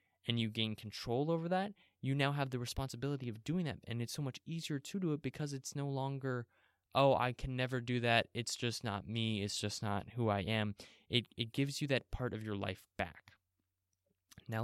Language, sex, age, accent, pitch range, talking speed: English, male, 20-39, American, 110-135 Hz, 215 wpm